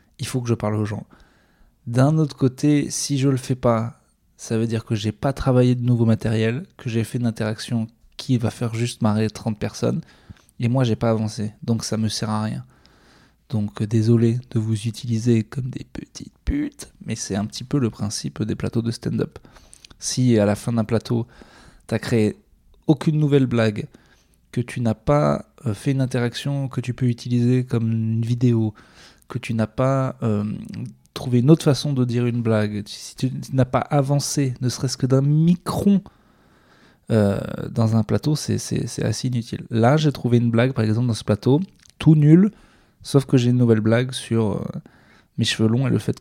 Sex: male